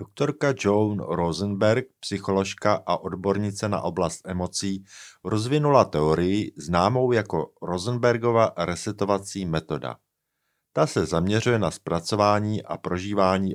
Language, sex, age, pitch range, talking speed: Czech, male, 50-69, 90-110 Hz, 100 wpm